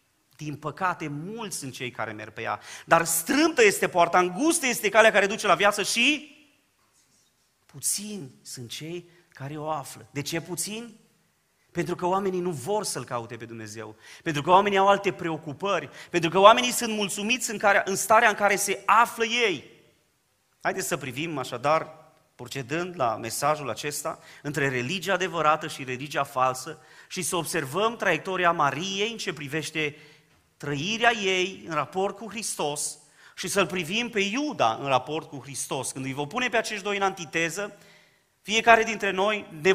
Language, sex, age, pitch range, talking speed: Romanian, male, 30-49, 145-205 Hz, 165 wpm